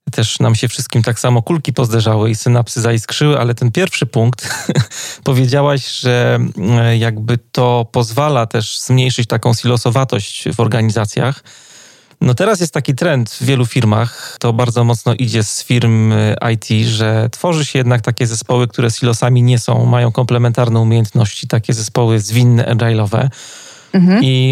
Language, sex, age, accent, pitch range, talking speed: Polish, male, 30-49, native, 120-140 Hz, 145 wpm